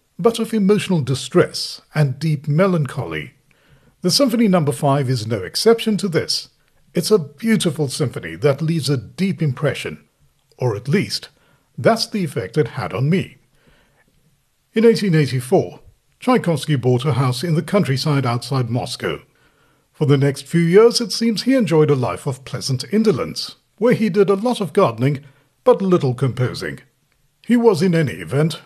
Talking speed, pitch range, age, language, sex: 155 wpm, 135-190 Hz, 50-69, English, male